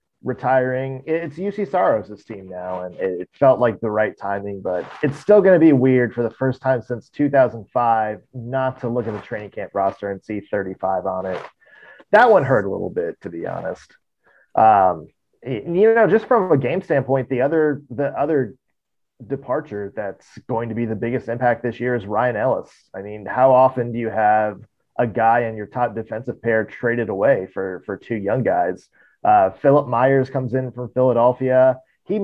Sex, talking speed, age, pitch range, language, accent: male, 190 wpm, 30-49, 115-140 Hz, English, American